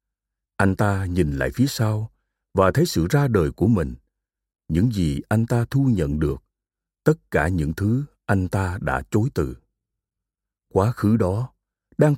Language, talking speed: Vietnamese, 165 wpm